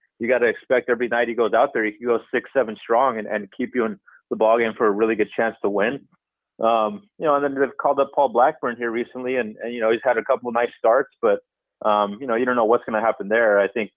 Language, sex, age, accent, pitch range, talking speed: English, male, 30-49, American, 110-140 Hz, 290 wpm